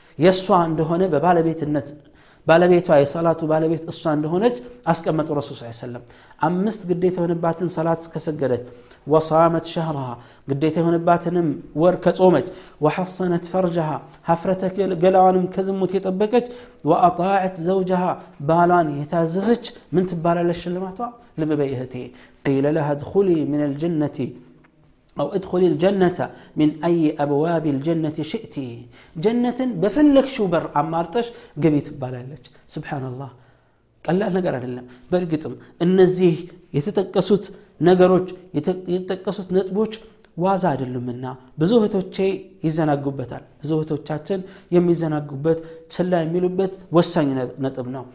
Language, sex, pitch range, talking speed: Amharic, male, 145-185 Hz, 95 wpm